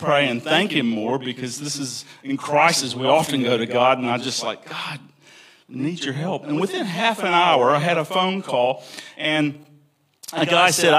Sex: male